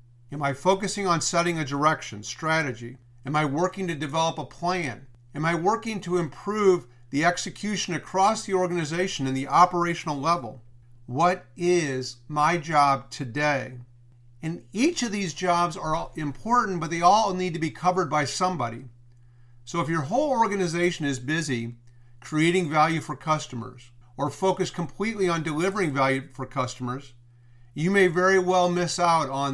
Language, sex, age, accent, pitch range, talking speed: English, male, 50-69, American, 130-180 Hz, 155 wpm